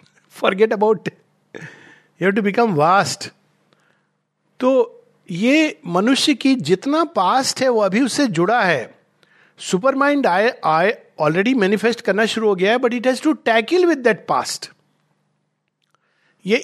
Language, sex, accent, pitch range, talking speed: Hindi, male, native, 180-255 Hz, 140 wpm